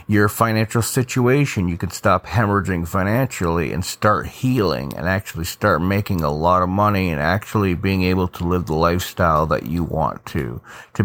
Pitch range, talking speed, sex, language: 95-120 Hz, 175 wpm, male, English